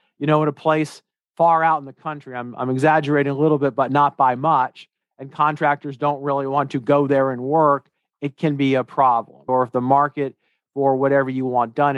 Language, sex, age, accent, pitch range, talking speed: English, male, 40-59, American, 135-155 Hz, 220 wpm